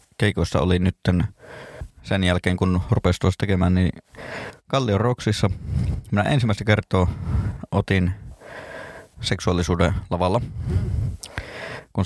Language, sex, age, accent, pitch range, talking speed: Finnish, male, 20-39, native, 95-110 Hz, 90 wpm